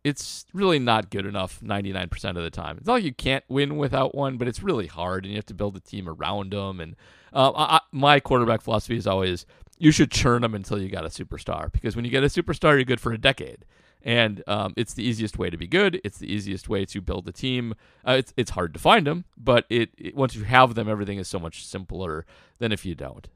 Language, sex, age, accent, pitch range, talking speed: English, male, 40-59, American, 100-135 Hz, 255 wpm